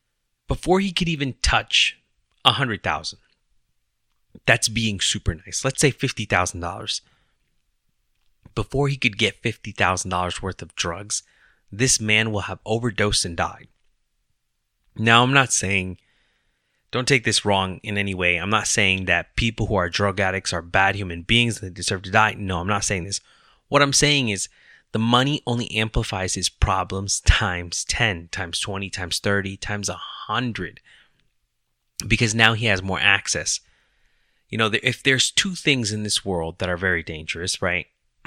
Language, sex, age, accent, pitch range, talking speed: English, male, 20-39, American, 95-120 Hz, 155 wpm